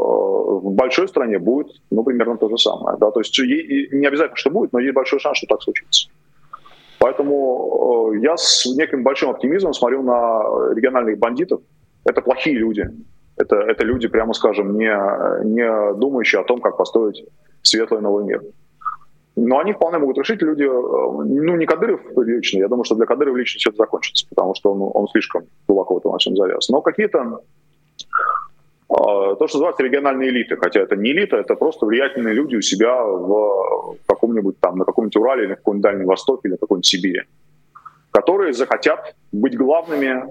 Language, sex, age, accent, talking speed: Russian, male, 20-39, native, 170 wpm